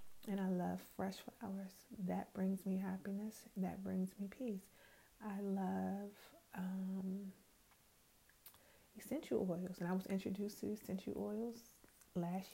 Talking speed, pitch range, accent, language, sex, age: 125 wpm, 190-220 Hz, American, English, female, 30-49